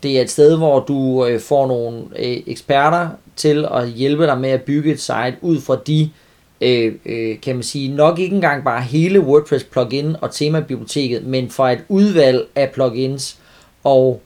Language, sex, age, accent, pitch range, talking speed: Danish, male, 30-49, native, 130-155 Hz, 180 wpm